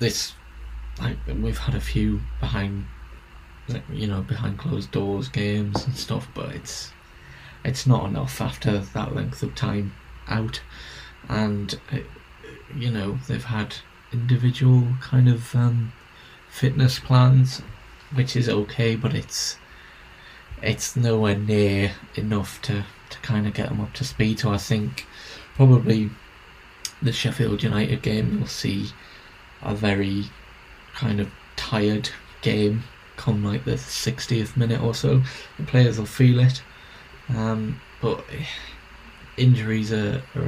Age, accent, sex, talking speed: 20-39, British, male, 130 wpm